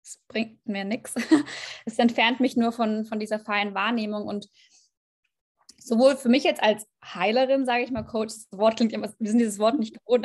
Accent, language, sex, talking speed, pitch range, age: German, German, female, 185 wpm, 210-250 Hz, 20-39